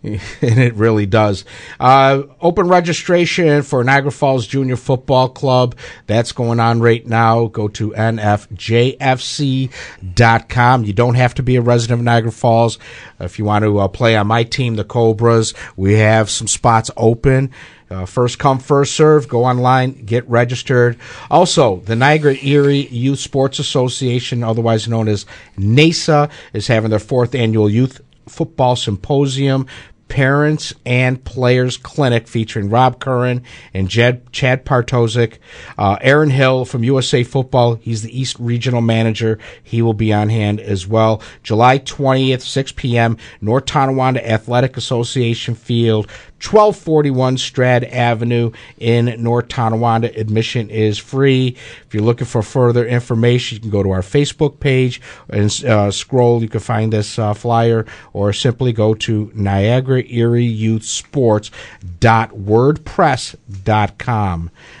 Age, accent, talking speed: 50-69, American, 140 wpm